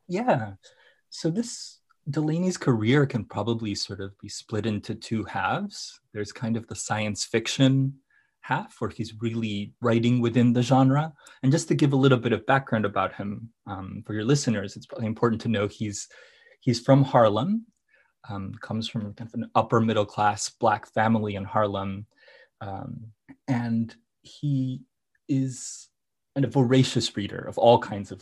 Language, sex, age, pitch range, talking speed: English, male, 20-39, 105-125 Hz, 155 wpm